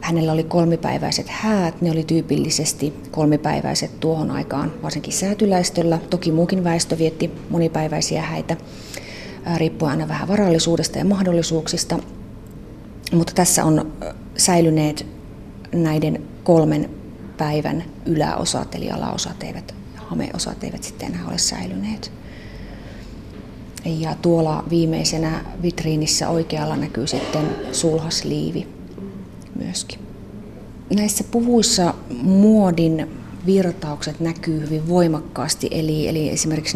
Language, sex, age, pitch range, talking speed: Finnish, female, 30-49, 150-170 Hz, 100 wpm